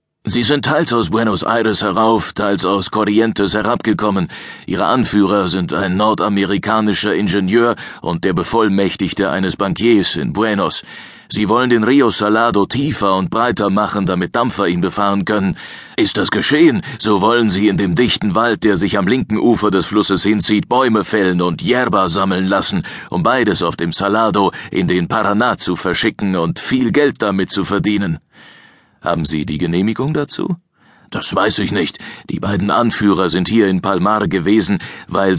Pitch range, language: 95-110 Hz, German